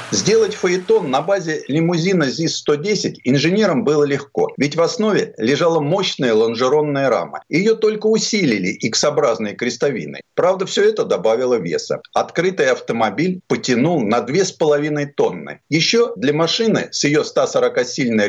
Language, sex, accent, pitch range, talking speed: Russian, male, native, 145-225 Hz, 130 wpm